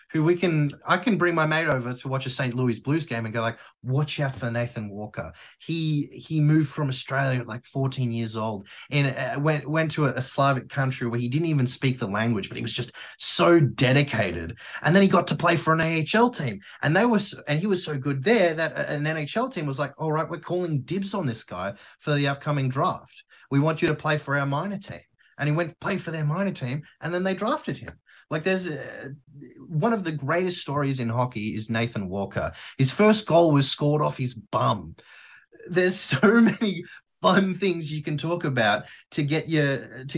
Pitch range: 125-160 Hz